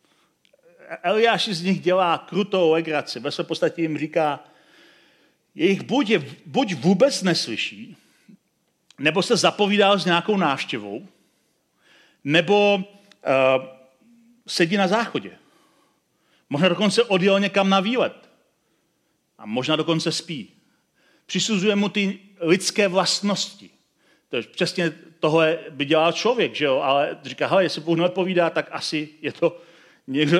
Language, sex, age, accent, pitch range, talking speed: Czech, male, 40-59, native, 165-205 Hz, 120 wpm